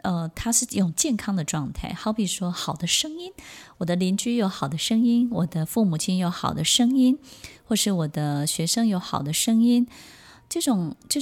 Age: 20-39